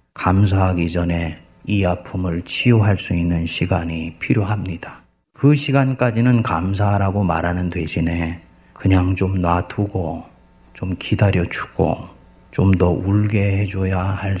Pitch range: 90-115 Hz